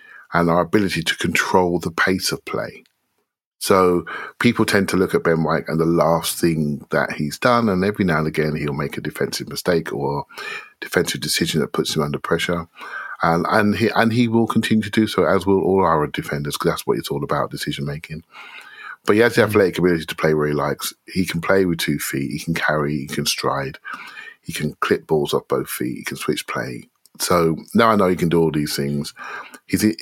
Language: English